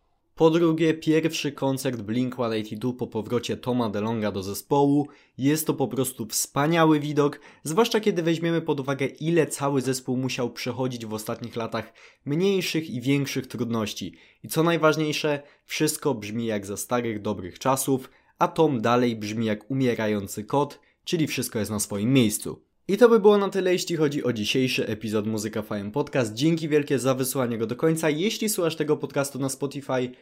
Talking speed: 165 wpm